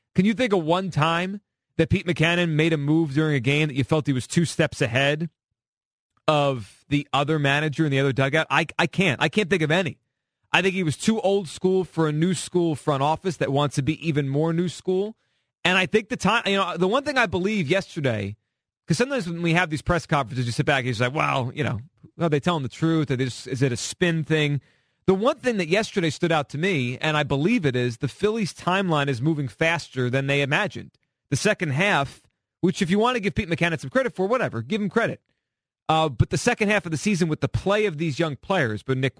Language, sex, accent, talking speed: English, male, American, 245 wpm